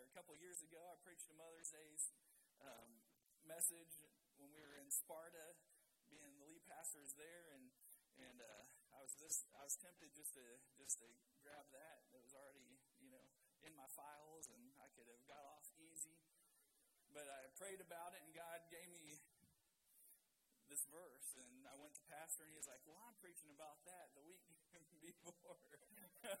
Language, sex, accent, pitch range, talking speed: English, male, American, 150-185 Hz, 185 wpm